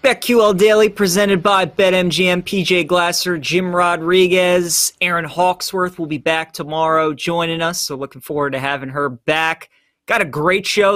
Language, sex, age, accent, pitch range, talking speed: English, male, 30-49, American, 150-180 Hz, 160 wpm